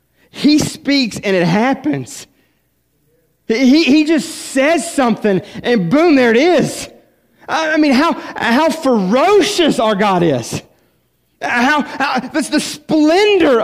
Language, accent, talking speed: English, American, 130 wpm